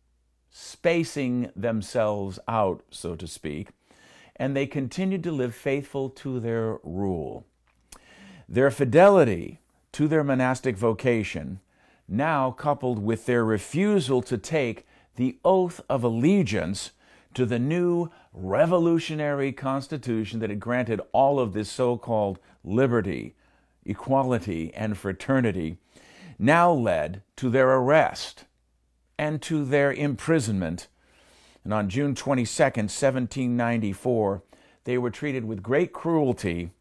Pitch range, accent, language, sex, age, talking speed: 105-140 Hz, American, English, male, 50-69, 110 wpm